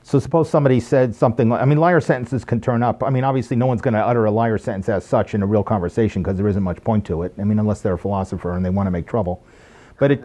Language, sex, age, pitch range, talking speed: English, male, 50-69, 105-130 Hz, 300 wpm